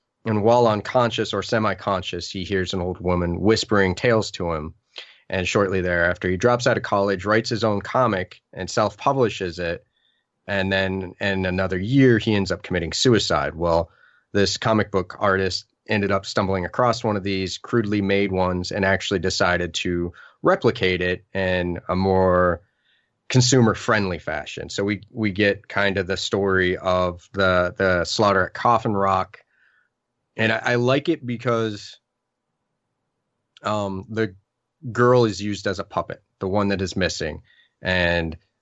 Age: 30-49